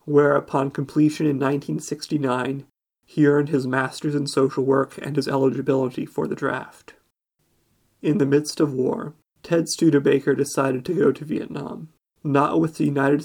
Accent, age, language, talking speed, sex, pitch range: American, 30-49, English, 165 wpm, male, 140-150 Hz